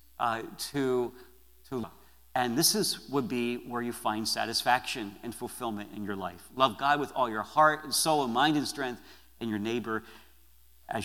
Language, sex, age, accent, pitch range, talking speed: English, male, 50-69, American, 90-135 Hz, 185 wpm